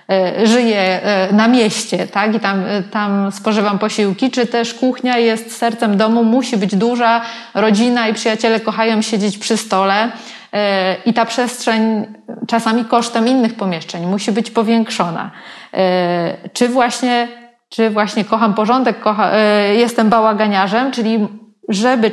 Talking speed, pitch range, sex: 125 wpm, 205-240 Hz, female